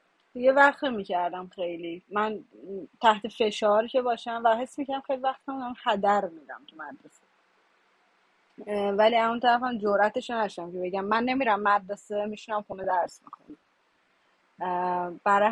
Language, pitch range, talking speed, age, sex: Persian, 205-265 Hz, 130 wpm, 30-49, female